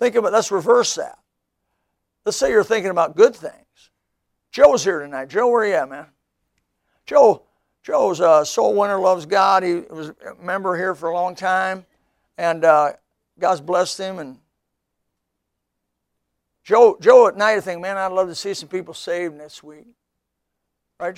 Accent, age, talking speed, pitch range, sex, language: American, 60-79, 165 wpm, 145-200 Hz, male, English